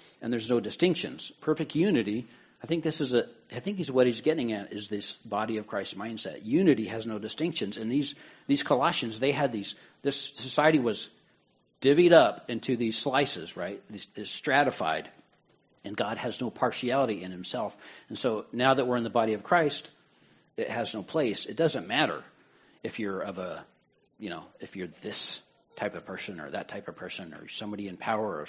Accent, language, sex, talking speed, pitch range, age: American, English, male, 195 wpm, 105-135 Hz, 60-79